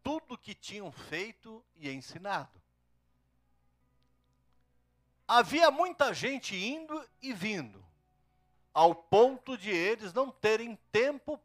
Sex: male